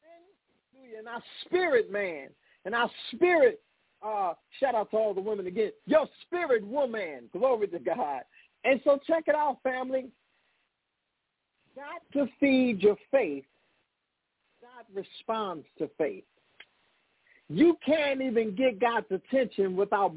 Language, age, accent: English, 50-69, American